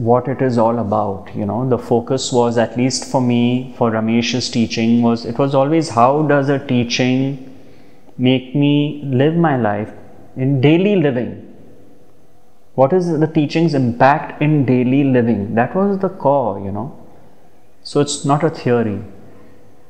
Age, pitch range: 30-49, 115-145 Hz